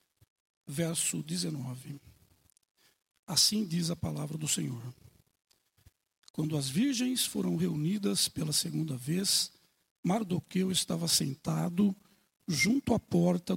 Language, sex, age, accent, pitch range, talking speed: Portuguese, male, 60-79, Brazilian, 155-200 Hz, 95 wpm